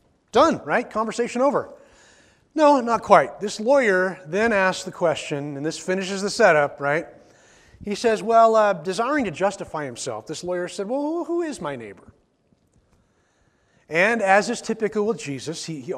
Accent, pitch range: American, 165-215 Hz